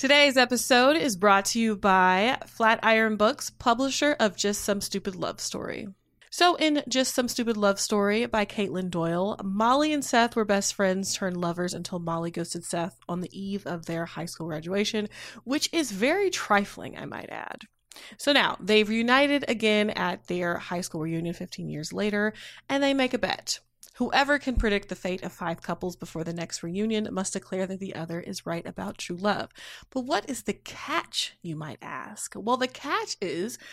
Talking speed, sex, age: 185 wpm, female, 20-39